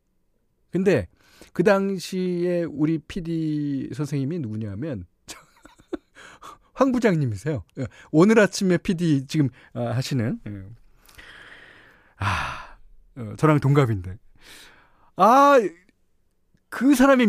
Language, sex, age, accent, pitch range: Korean, male, 40-59, native, 110-180 Hz